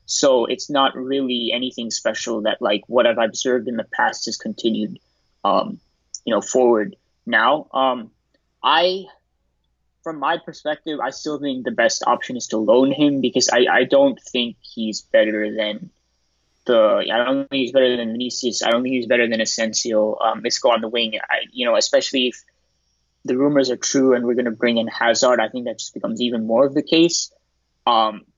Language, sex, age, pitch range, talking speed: English, male, 20-39, 110-135 Hz, 195 wpm